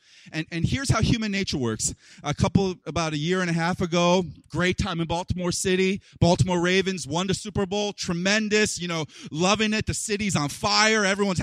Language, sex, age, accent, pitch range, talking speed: English, male, 30-49, American, 185-255 Hz, 195 wpm